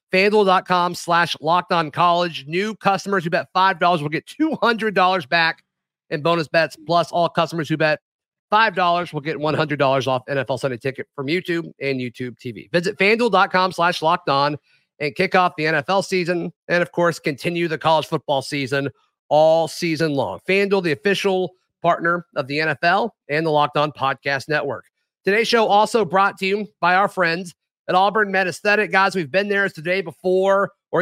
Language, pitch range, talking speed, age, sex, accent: English, 155-195 Hz, 180 wpm, 30-49, male, American